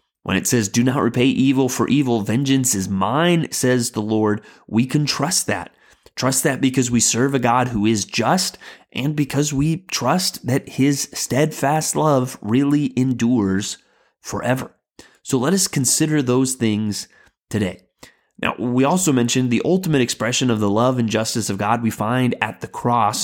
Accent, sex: American, male